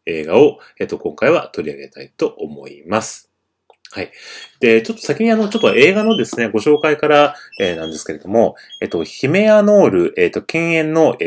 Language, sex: Japanese, male